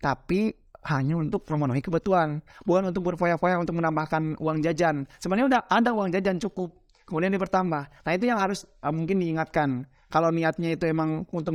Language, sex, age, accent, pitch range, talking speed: Indonesian, male, 30-49, native, 145-195 Hz, 165 wpm